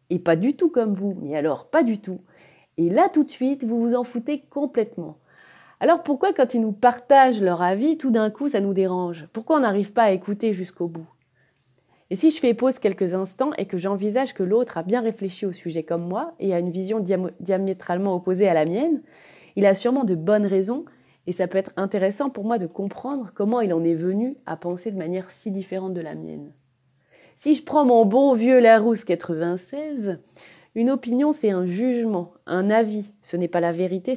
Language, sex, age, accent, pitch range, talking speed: French, female, 30-49, French, 175-235 Hz, 210 wpm